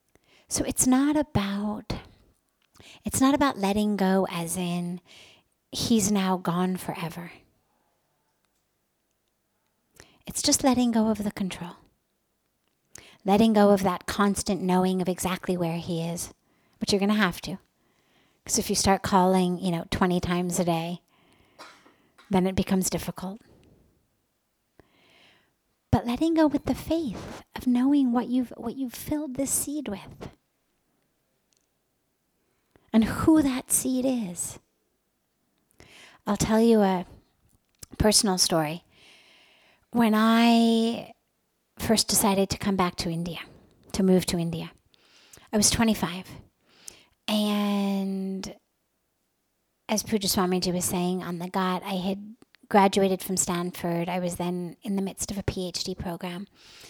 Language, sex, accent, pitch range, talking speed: English, female, American, 180-225 Hz, 130 wpm